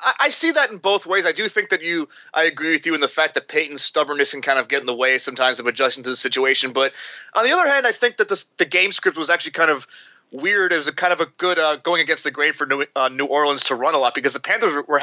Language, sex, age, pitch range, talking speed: English, male, 30-49, 135-170 Hz, 305 wpm